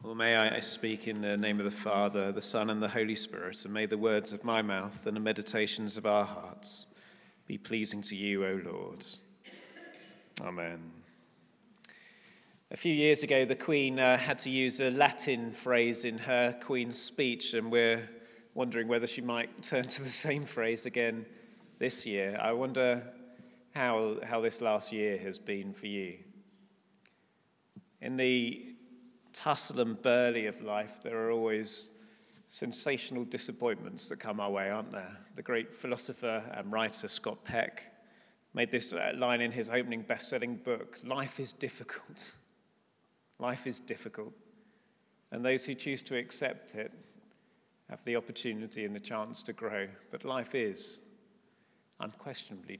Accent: British